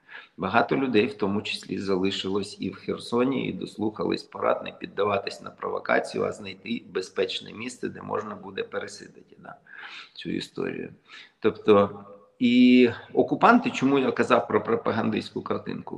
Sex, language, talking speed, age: male, Ukrainian, 130 wpm, 40-59